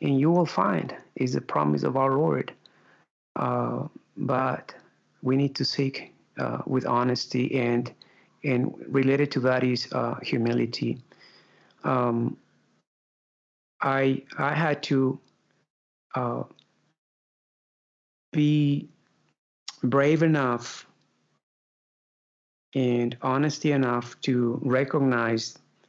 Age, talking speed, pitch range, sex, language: 50-69, 95 wpm, 120-145 Hz, male, English